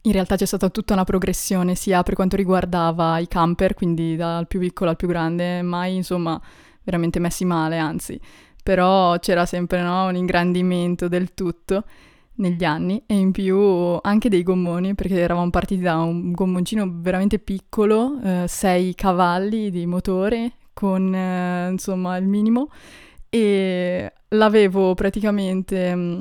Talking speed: 140 wpm